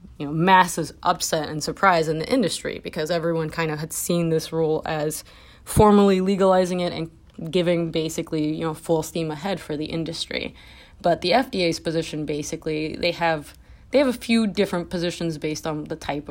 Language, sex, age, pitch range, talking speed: English, female, 20-39, 155-175 Hz, 180 wpm